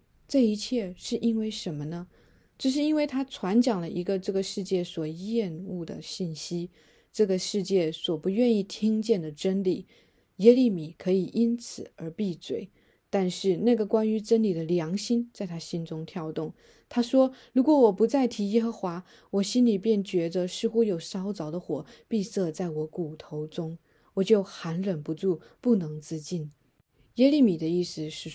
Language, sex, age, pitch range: Chinese, female, 20-39, 165-220 Hz